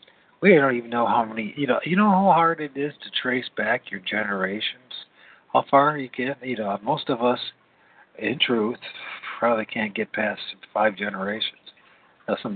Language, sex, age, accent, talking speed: English, male, 50-69, American, 180 wpm